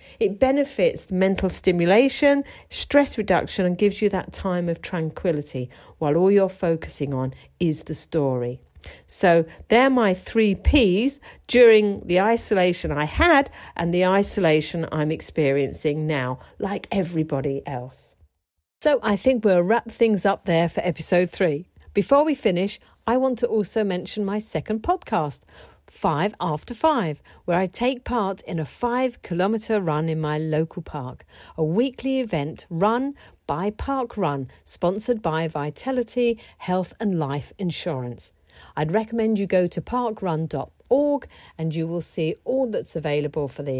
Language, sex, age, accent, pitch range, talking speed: English, female, 50-69, British, 155-225 Hz, 145 wpm